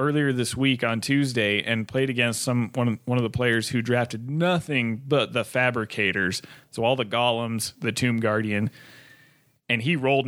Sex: male